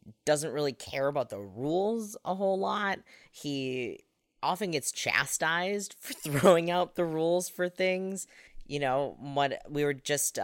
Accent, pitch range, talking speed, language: American, 120-155 Hz, 150 wpm, English